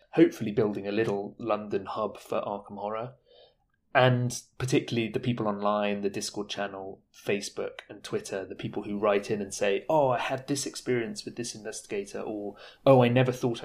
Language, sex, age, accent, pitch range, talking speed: English, male, 30-49, British, 105-125 Hz, 175 wpm